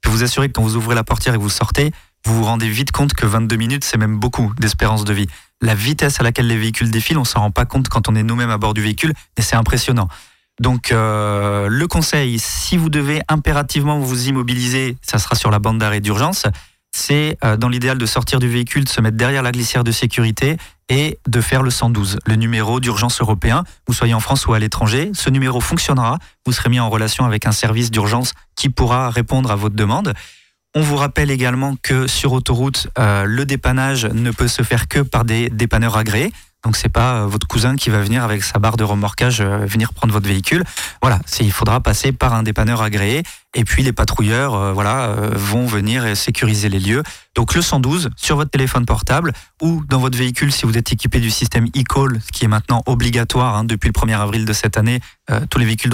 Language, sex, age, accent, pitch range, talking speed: French, male, 30-49, French, 110-130 Hz, 225 wpm